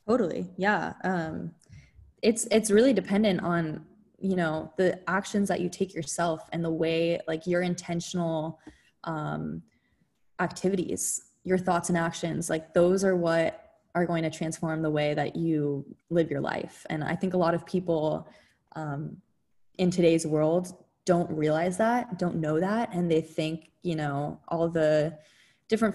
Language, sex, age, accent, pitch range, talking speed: English, female, 20-39, American, 155-185 Hz, 155 wpm